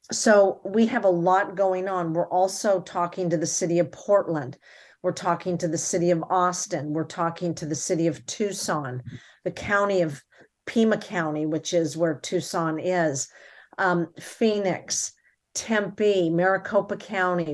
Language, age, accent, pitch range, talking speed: English, 50-69, American, 170-195 Hz, 150 wpm